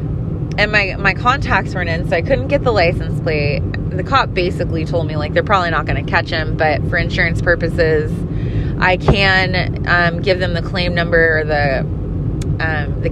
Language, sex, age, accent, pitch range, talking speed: English, female, 20-39, American, 140-175 Hz, 190 wpm